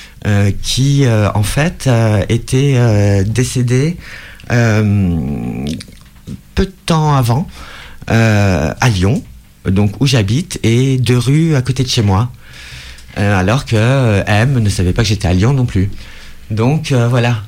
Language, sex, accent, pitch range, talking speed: French, male, French, 100-130 Hz, 150 wpm